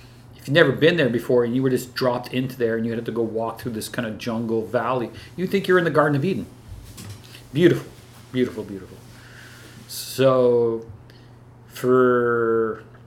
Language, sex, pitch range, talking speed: English, male, 115-125 Hz, 175 wpm